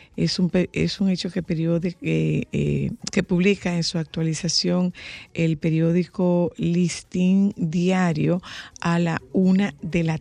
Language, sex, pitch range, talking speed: Spanish, female, 155-180 Hz, 130 wpm